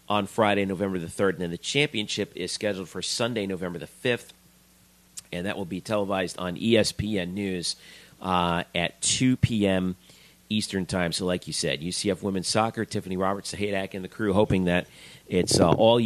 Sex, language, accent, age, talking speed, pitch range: male, English, American, 40-59, 180 wpm, 90-105 Hz